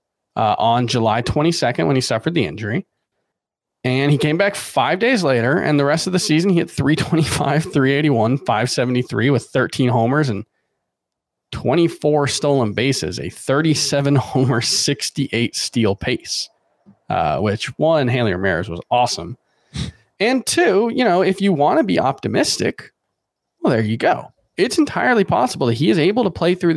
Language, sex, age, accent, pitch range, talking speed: English, male, 20-39, American, 115-155 Hz, 160 wpm